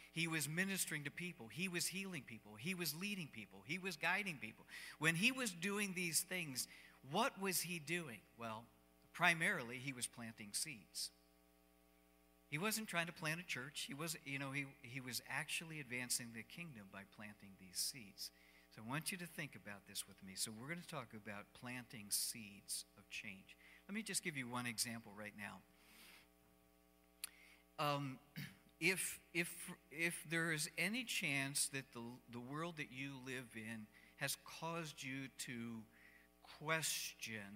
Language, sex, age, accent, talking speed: English, male, 50-69, American, 170 wpm